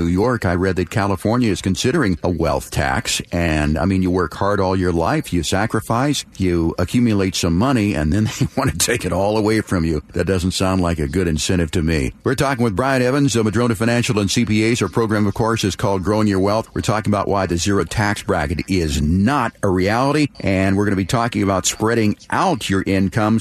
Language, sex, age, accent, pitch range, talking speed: English, male, 50-69, American, 95-120 Hz, 225 wpm